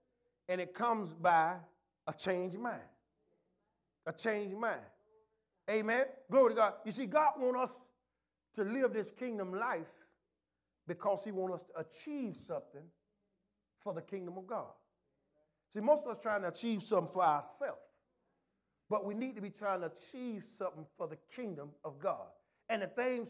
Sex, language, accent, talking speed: male, English, American, 165 wpm